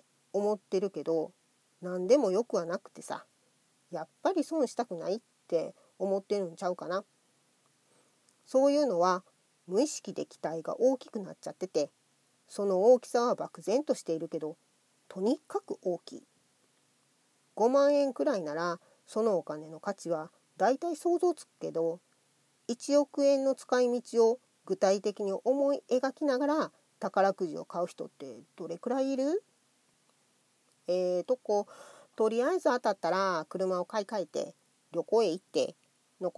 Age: 40-59